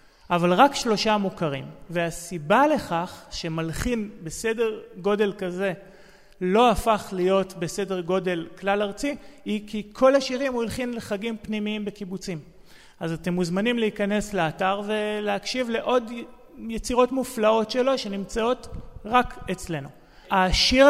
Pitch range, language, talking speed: 170-210 Hz, Hebrew, 115 wpm